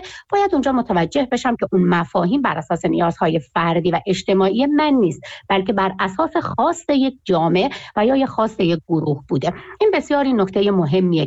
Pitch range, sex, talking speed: 175-245 Hz, female, 175 wpm